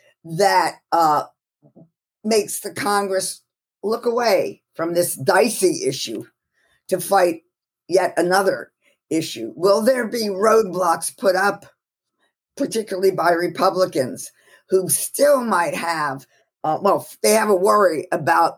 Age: 50-69